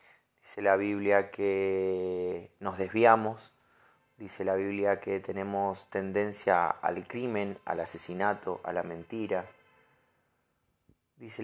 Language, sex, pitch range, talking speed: Spanish, male, 95-115 Hz, 105 wpm